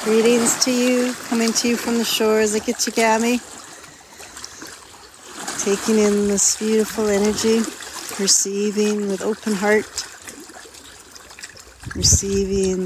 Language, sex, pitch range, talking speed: English, female, 190-220 Hz, 100 wpm